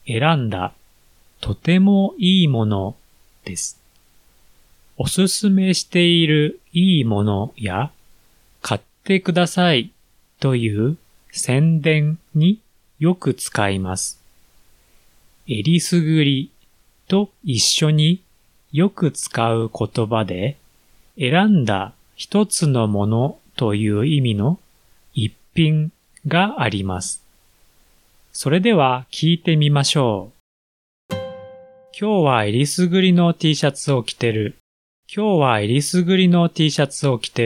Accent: native